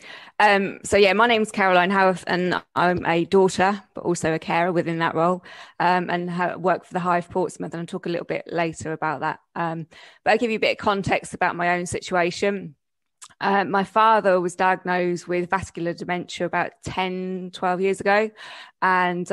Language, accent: English, British